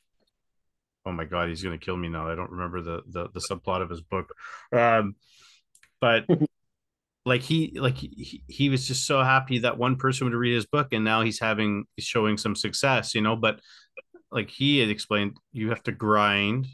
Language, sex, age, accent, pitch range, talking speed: English, male, 40-59, American, 100-130 Hz, 195 wpm